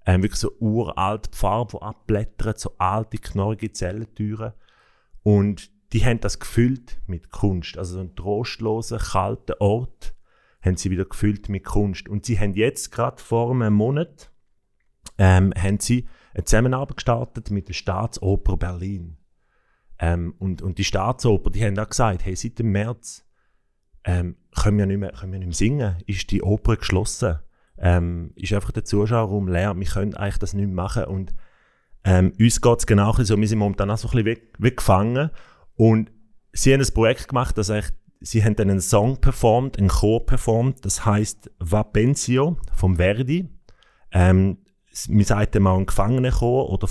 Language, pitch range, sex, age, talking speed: German, 95-115 Hz, male, 30-49, 165 wpm